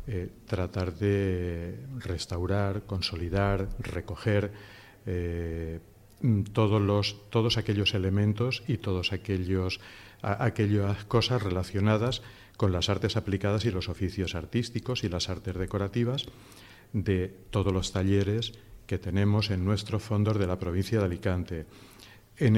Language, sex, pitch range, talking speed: Spanish, male, 95-110 Hz, 120 wpm